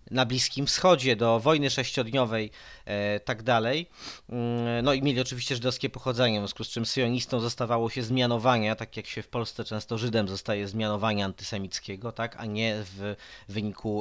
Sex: male